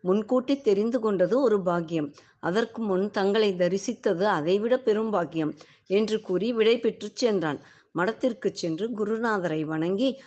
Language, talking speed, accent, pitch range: Tamil, 125 wpm, native, 180-225 Hz